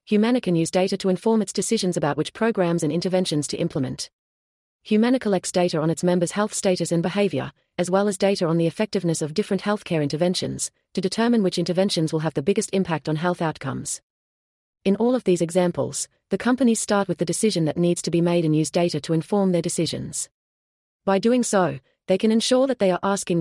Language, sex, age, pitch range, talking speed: English, female, 40-59, 160-195 Hz, 210 wpm